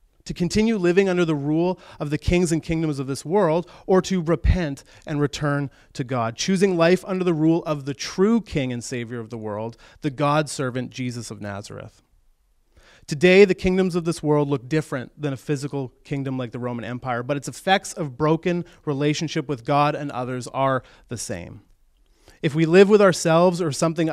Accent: American